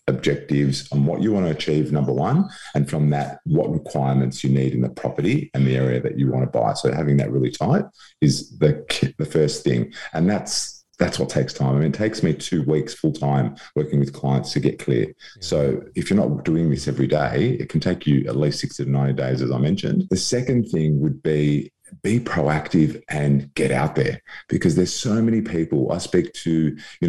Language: English